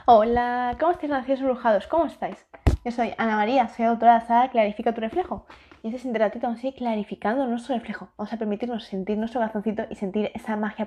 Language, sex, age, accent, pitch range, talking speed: Spanish, female, 20-39, Spanish, 205-245 Hz, 220 wpm